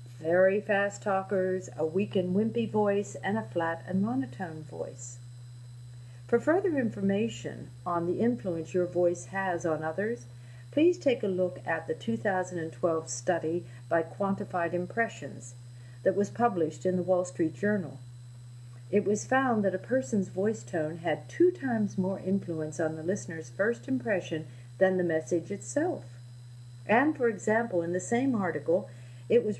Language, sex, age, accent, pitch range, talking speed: English, female, 50-69, American, 120-205 Hz, 150 wpm